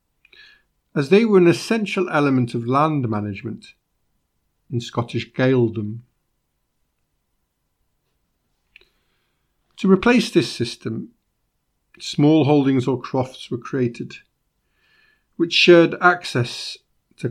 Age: 50-69